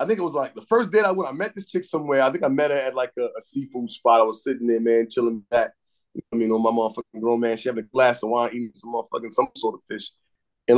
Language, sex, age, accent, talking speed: English, male, 30-49, American, 295 wpm